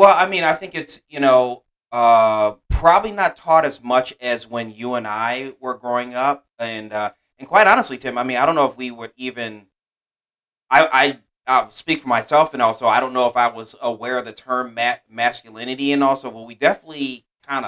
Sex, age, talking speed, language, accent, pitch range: male, 30-49, 210 wpm, English, American, 115-140 Hz